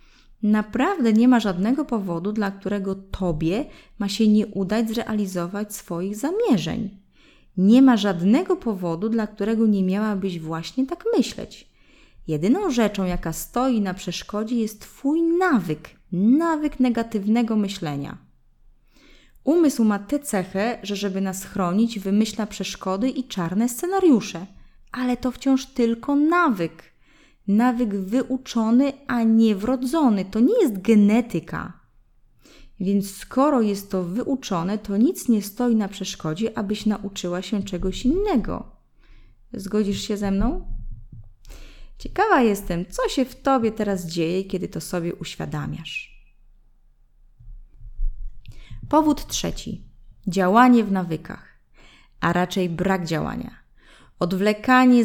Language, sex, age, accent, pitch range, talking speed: Polish, female, 20-39, native, 185-245 Hz, 115 wpm